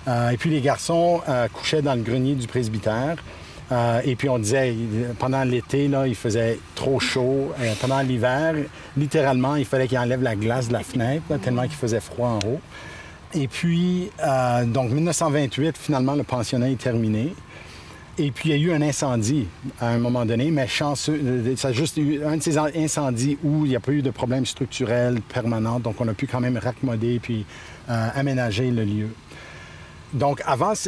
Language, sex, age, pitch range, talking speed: French, male, 50-69, 120-150 Hz, 190 wpm